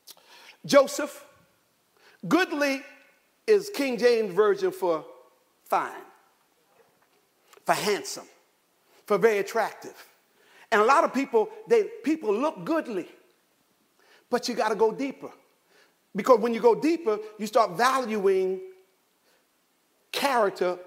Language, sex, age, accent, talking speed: English, male, 50-69, American, 105 wpm